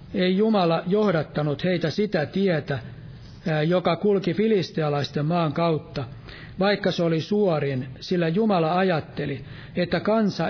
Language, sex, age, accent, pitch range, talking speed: Finnish, male, 60-79, native, 155-190 Hz, 115 wpm